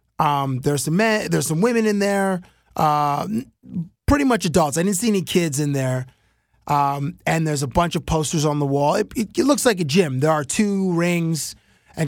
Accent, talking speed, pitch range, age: American, 210 wpm, 130-175 Hz, 20-39